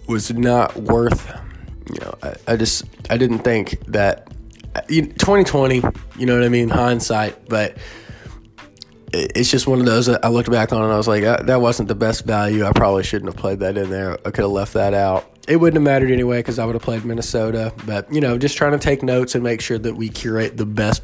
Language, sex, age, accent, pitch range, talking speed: English, male, 20-39, American, 110-125 Hz, 230 wpm